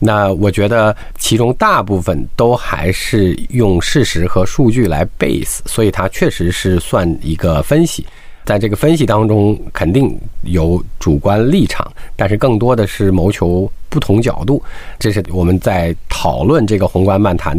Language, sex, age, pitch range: Chinese, male, 50-69, 85-115 Hz